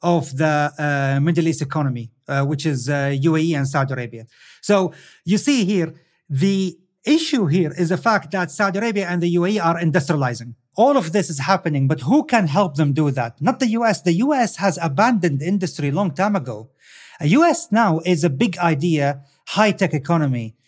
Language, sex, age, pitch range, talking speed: English, male, 40-59, 150-195 Hz, 185 wpm